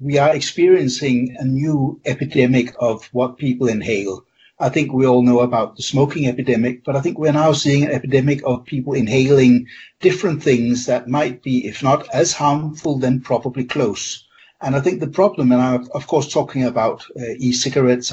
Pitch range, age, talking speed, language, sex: 125-145 Hz, 60-79, 180 wpm, English, male